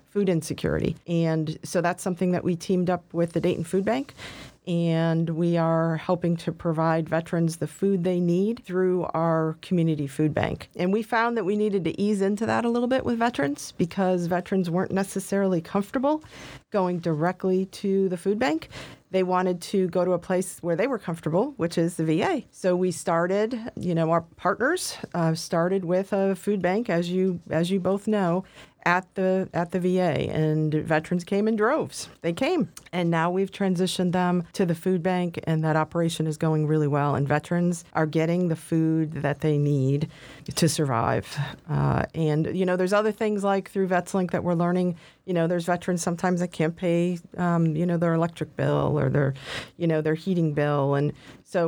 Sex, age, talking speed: female, 40-59, 195 wpm